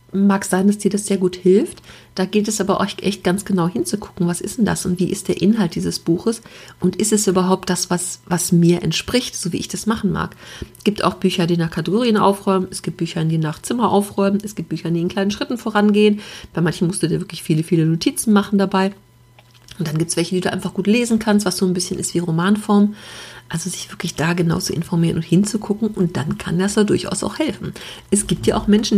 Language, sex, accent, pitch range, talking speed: German, female, German, 175-210 Hz, 240 wpm